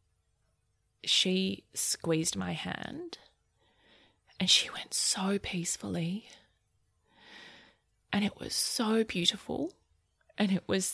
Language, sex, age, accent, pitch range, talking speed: English, female, 20-39, Australian, 170-205 Hz, 95 wpm